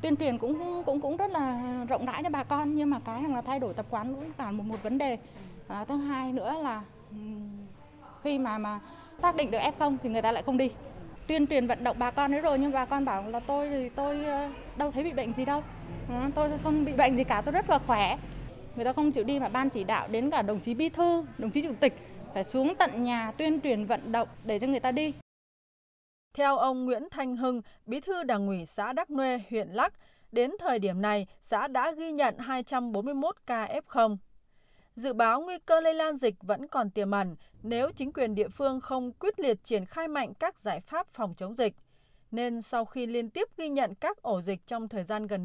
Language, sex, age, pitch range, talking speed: Vietnamese, female, 20-39, 215-290 Hz, 235 wpm